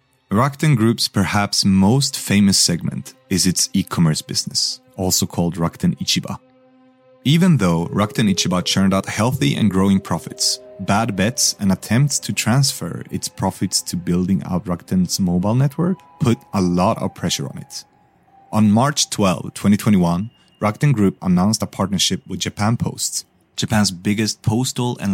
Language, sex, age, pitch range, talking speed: English, male, 30-49, 95-130 Hz, 145 wpm